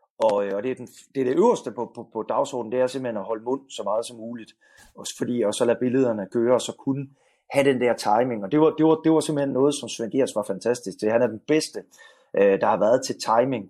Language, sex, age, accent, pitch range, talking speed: Danish, male, 30-49, native, 105-135 Hz, 260 wpm